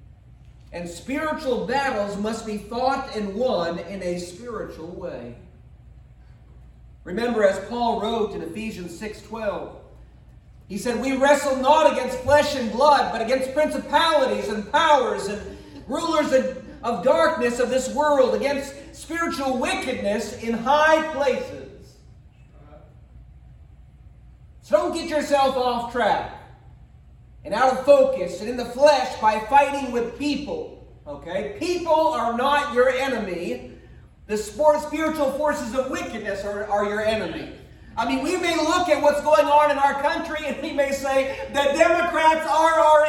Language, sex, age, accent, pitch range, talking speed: English, male, 40-59, American, 230-300 Hz, 140 wpm